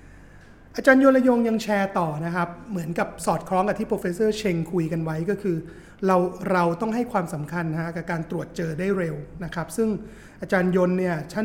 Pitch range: 170-205 Hz